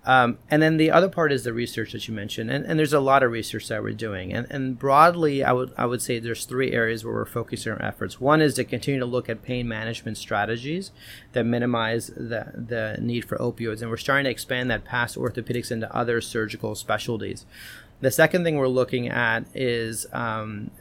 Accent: American